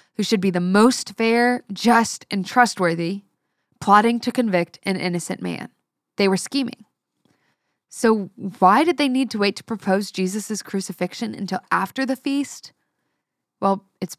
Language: English